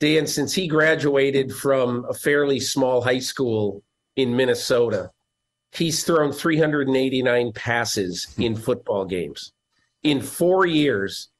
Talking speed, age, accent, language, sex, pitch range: 115 wpm, 50-69, American, English, male, 120-150 Hz